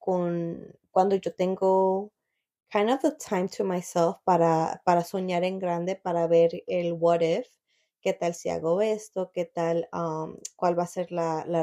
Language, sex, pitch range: Spanish, female, 170-195 Hz